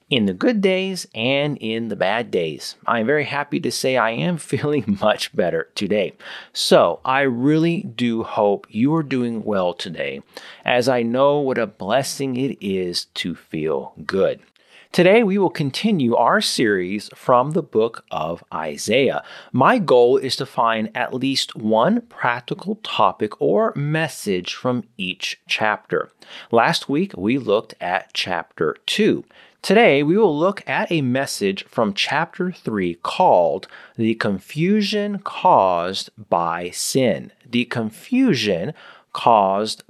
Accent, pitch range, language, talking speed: American, 115-185 Hz, English, 140 wpm